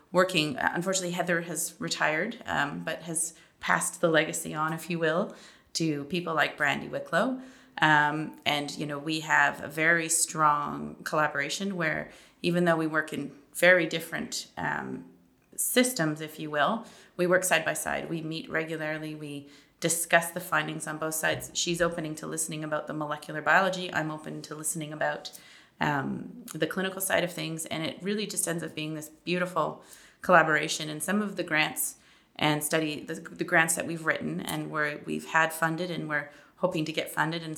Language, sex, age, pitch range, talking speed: English, female, 30-49, 155-175 Hz, 180 wpm